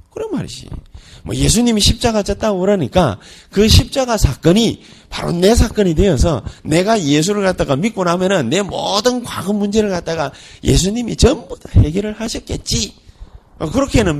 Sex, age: male, 30-49